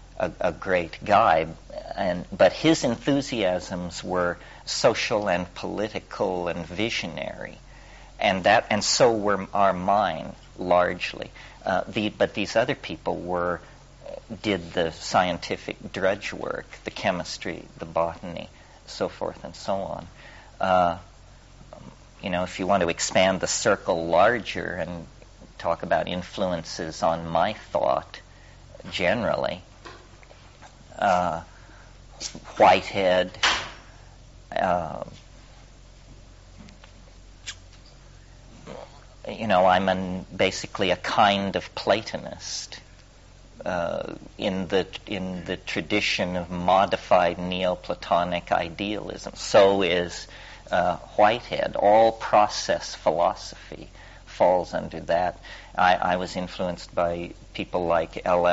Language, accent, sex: English, American, male